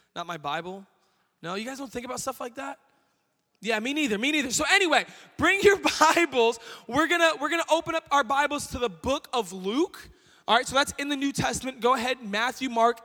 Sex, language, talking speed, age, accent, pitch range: male, English, 220 wpm, 20-39, American, 190-270 Hz